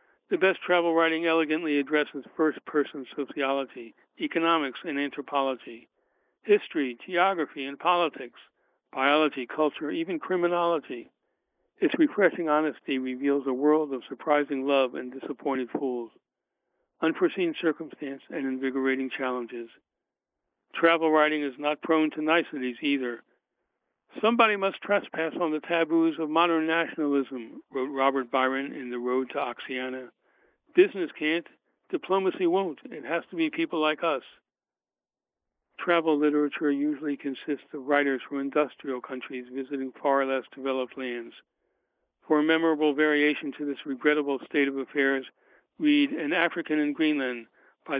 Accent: American